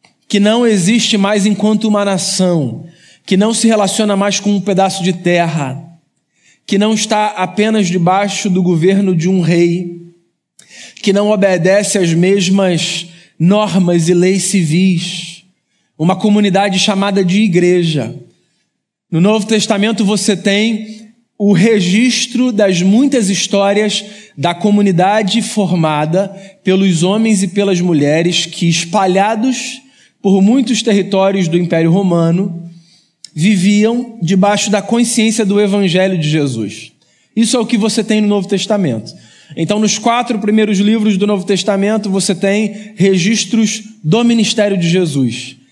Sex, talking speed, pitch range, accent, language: male, 130 wpm, 175-215 Hz, Brazilian, Portuguese